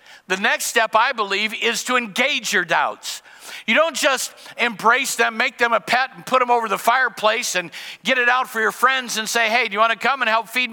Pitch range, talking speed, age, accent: 215-255 Hz, 235 wpm, 60-79, American